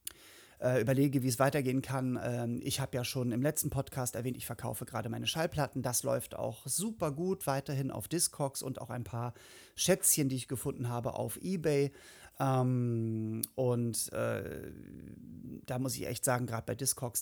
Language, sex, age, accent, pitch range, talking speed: German, male, 30-49, German, 120-140 Hz, 165 wpm